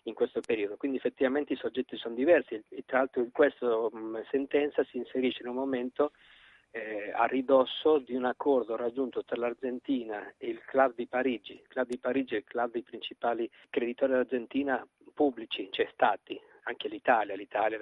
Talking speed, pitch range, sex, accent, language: 175 wpm, 120-155 Hz, male, native, Italian